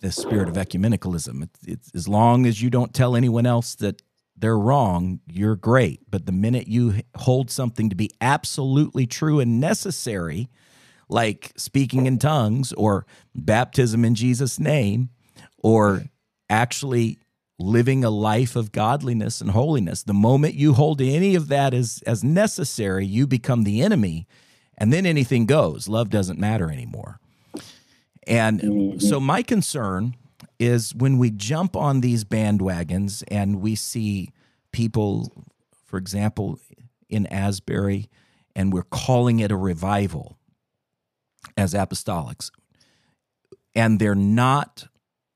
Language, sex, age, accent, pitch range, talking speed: English, male, 40-59, American, 100-130 Hz, 135 wpm